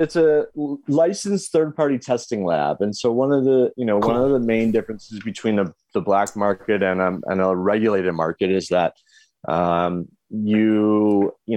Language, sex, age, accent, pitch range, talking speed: English, male, 30-49, American, 95-115 Hz, 175 wpm